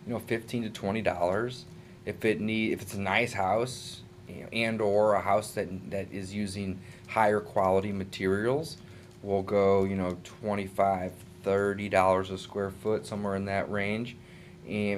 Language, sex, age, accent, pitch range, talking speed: English, male, 20-39, American, 95-120 Hz, 170 wpm